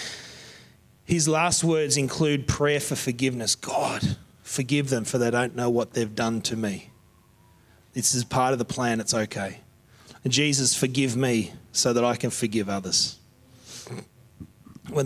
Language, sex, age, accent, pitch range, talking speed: English, male, 30-49, Australian, 120-145 Hz, 150 wpm